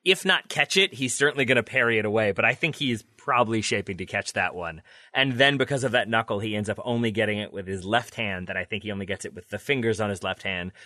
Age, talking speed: 30-49, 280 wpm